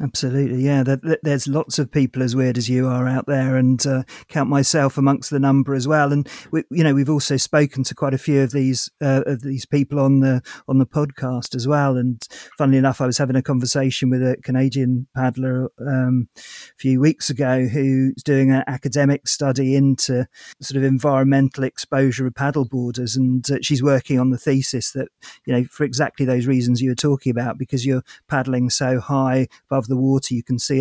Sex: male